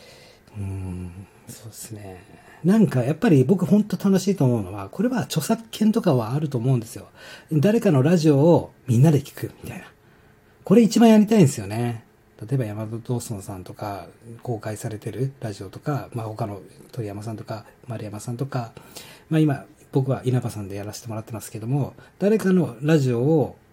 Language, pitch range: Japanese, 110-150 Hz